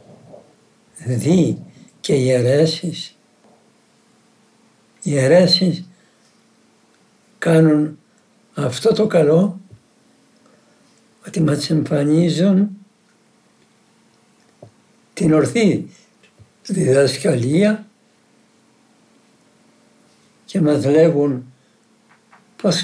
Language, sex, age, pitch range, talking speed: Greek, male, 60-79, 145-225 Hz, 55 wpm